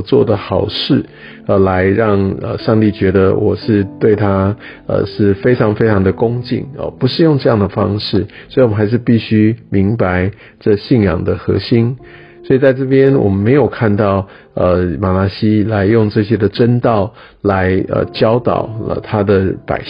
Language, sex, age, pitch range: Chinese, male, 50-69, 95-115 Hz